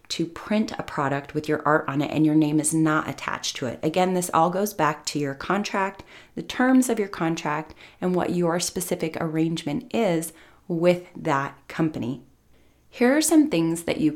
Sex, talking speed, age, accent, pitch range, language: female, 190 wpm, 30-49, American, 155-190 Hz, English